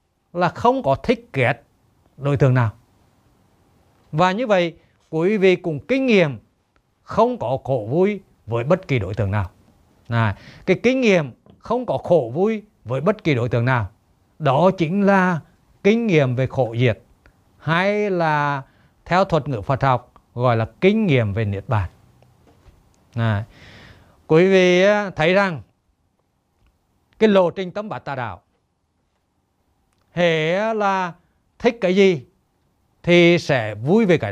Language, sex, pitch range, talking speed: Vietnamese, male, 110-180 Hz, 150 wpm